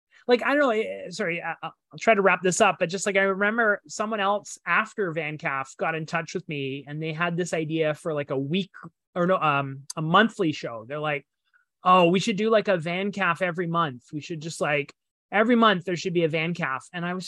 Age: 30-49